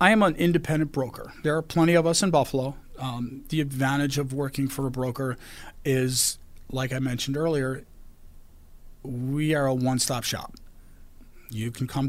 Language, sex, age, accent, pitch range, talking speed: English, male, 40-59, American, 115-135 Hz, 165 wpm